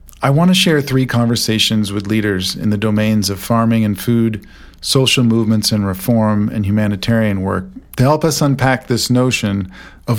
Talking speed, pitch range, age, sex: 170 wpm, 100-125 Hz, 40-59, male